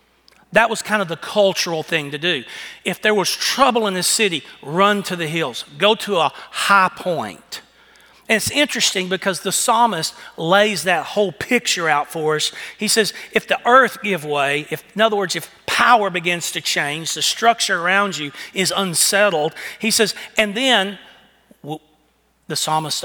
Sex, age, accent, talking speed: male, 40-59, American, 170 wpm